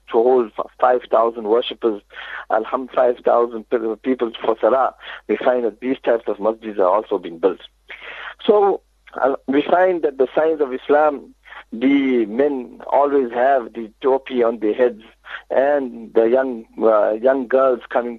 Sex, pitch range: male, 120-150 Hz